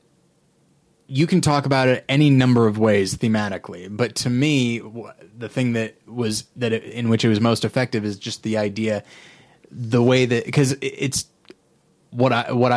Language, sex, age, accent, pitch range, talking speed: English, male, 20-39, American, 110-135 Hz, 175 wpm